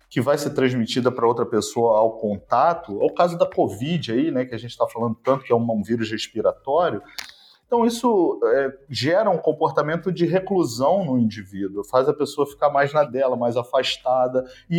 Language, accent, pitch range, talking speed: Portuguese, Brazilian, 125-190 Hz, 190 wpm